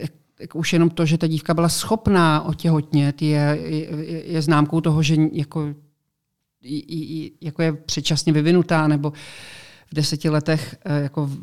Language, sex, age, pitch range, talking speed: Czech, male, 50-69, 145-165 Hz, 135 wpm